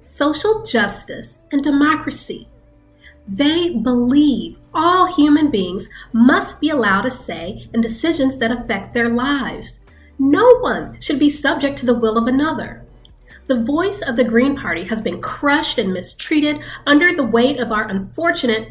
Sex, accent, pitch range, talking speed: female, American, 215-300 Hz, 150 wpm